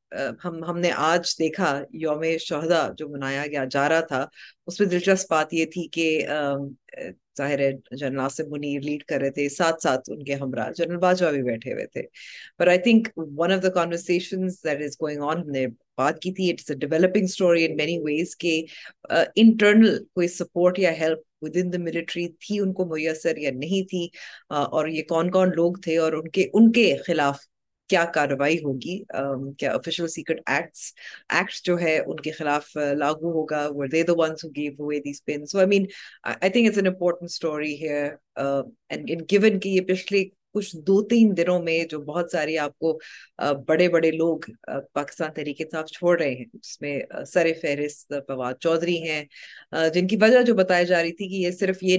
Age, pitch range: 30-49, 145-180 Hz